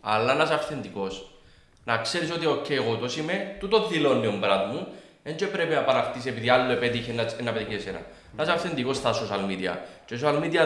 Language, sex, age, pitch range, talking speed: Greek, male, 20-39, 115-155 Hz, 205 wpm